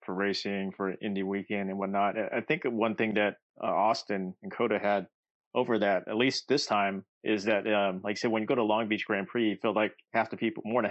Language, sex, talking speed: English, male, 250 wpm